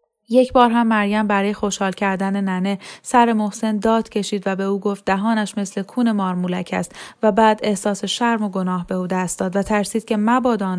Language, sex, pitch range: Persian, female, 195-230 Hz